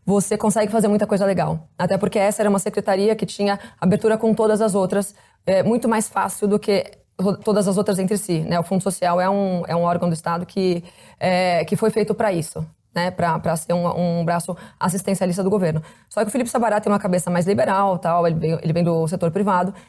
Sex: female